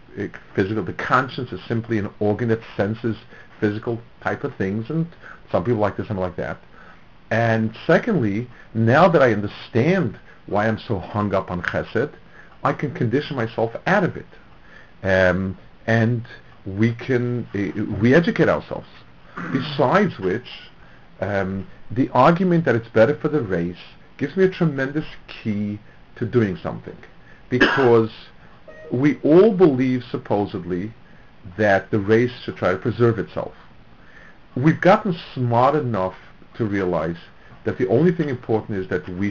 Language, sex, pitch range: English, male, 105-130 Hz